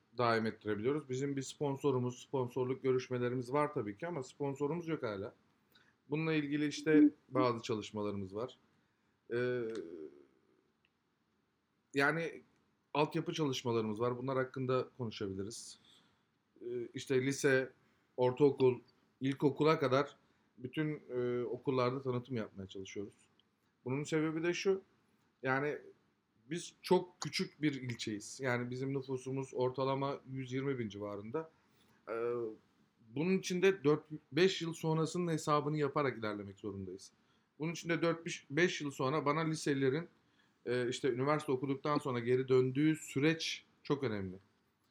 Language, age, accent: Turkish, 40-59, native